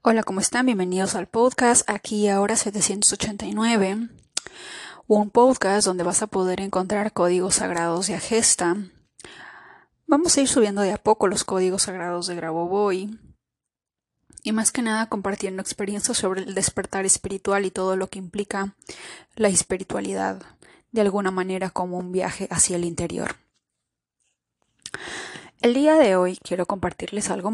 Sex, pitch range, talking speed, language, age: female, 185-220 Hz, 145 wpm, Spanish, 20-39